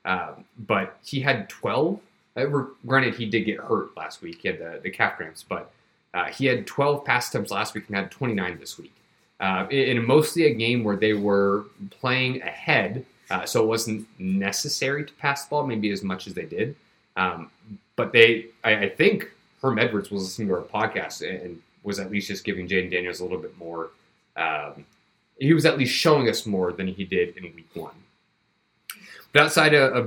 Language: English